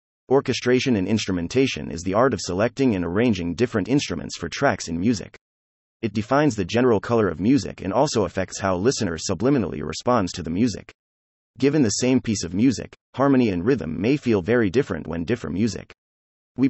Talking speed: 180 wpm